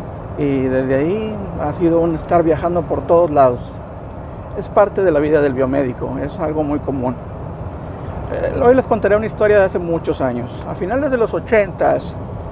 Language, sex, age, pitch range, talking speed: Spanish, male, 50-69, 135-190 Hz, 175 wpm